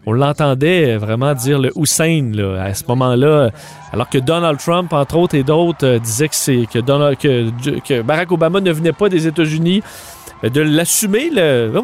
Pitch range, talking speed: 140-180 Hz, 190 wpm